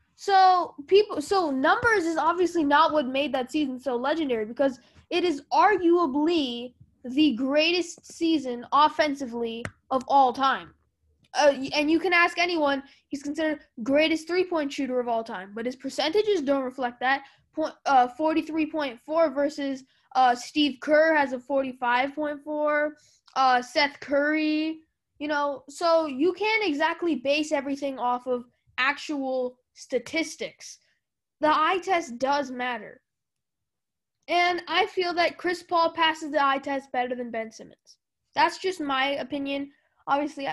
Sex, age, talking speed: female, 10-29, 135 wpm